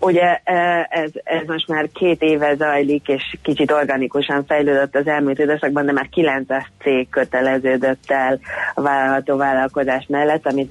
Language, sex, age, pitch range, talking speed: Hungarian, female, 30-49, 130-145 Hz, 145 wpm